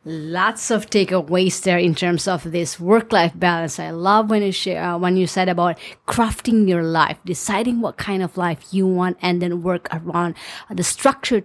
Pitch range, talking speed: 170-205 Hz, 185 wpm